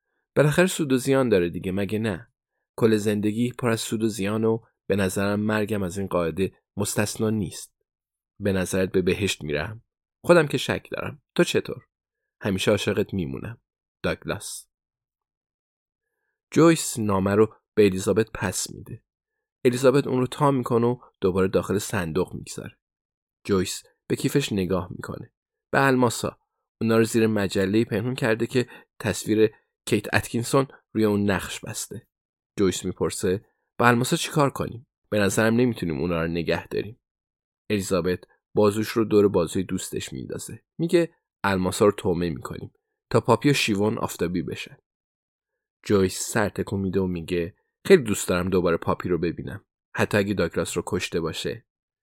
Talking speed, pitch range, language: 140 wpm, 95-120 Hz, Persian